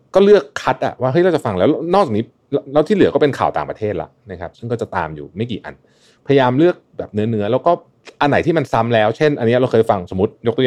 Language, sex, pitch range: Thai, male, 95-130 Hz